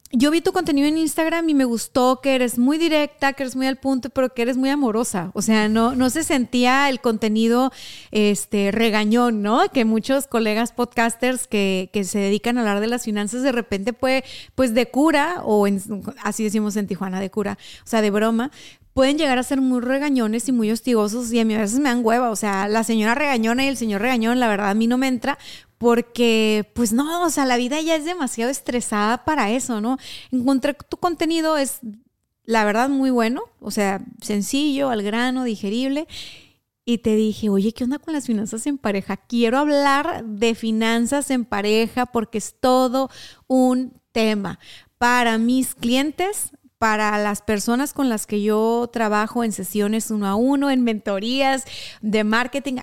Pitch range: 220-265 Hz